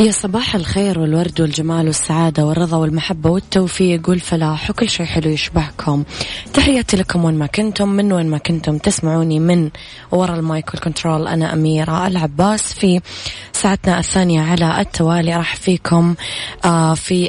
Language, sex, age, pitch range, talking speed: Arabic, female, 20-39, 155-180 Hz, 135 wpm